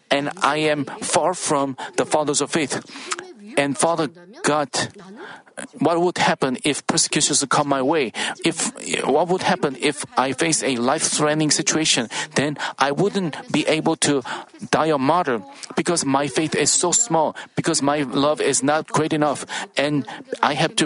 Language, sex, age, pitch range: Korean, male, 50-69, 145-180 Hz